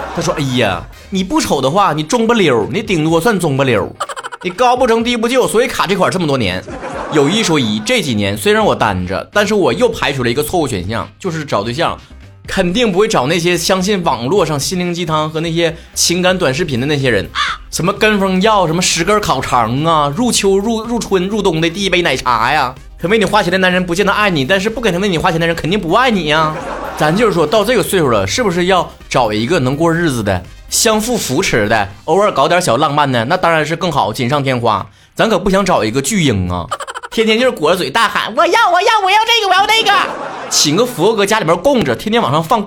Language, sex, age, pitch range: Chinese, male, 30-49, 145-220 Hz